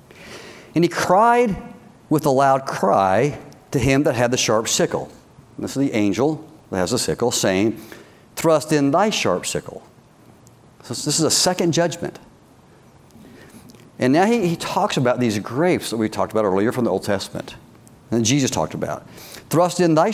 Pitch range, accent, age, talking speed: 110-145 Hz, American, 60-79, 175 wpm